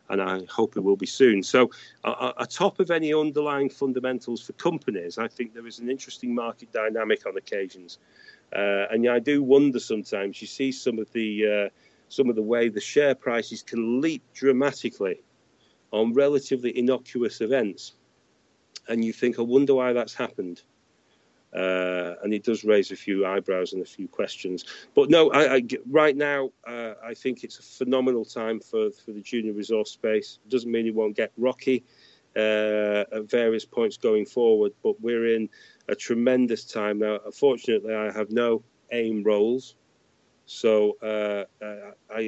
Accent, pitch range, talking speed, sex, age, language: British, 105-130 Hz, 170 wpm, male, 40-59, English